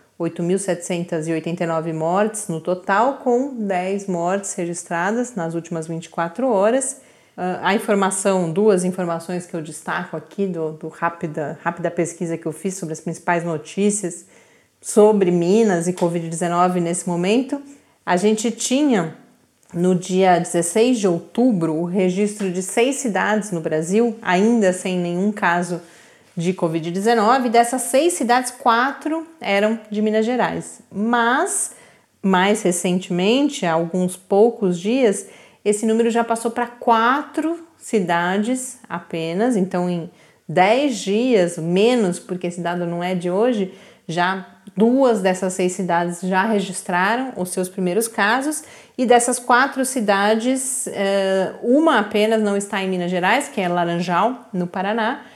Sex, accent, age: female, Brazilian, 30-49